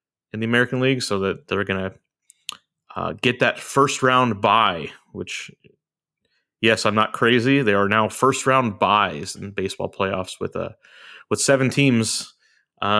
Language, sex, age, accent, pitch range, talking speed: English, male, 30-49, American, 100-135 Hz, 165 wpm